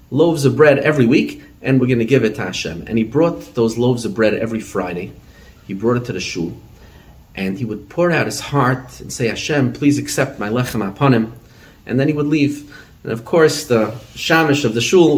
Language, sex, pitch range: English, male, 110-140 Hz